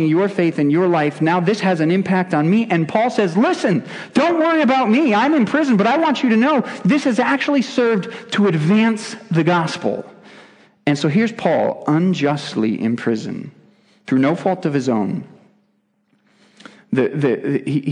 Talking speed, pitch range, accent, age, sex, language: 180 wpm, 140-210 Hz, American, 40-59, male, English